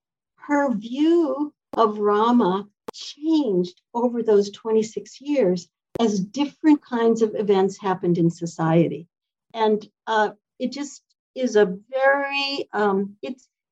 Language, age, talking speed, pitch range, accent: English, 60-79, 115 wpm, 190-250 Hz, American